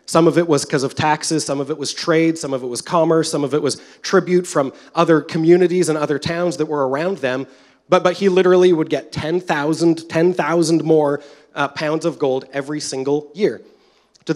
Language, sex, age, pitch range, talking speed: English, male, 30-49, 135-175 Hz, 200 wpm